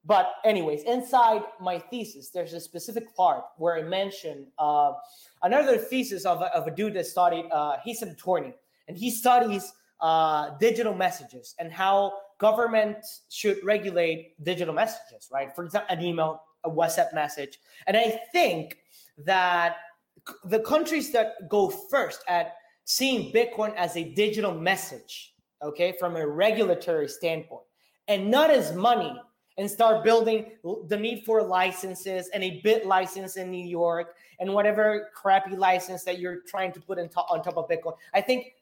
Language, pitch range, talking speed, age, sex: English, 175-220 Hz, 155 wpm, 20-39, male